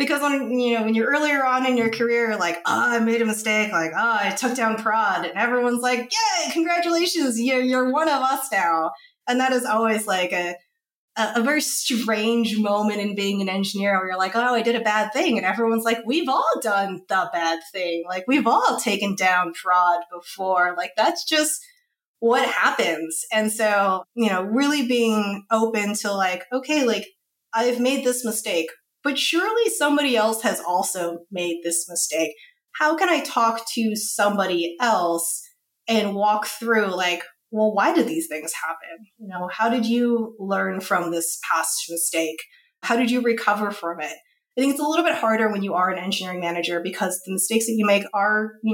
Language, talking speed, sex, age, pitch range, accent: English, 190 wpm, female, 20-39, 180-245 Hz, American